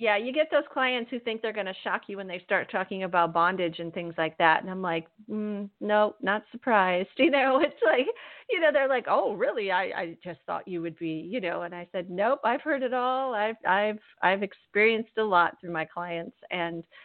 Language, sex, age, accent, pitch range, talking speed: English, female, 40-59, American, 170-210 Hz, 230 wpm